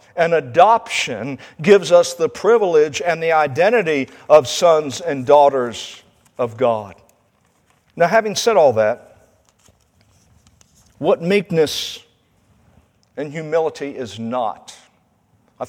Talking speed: 105 wpm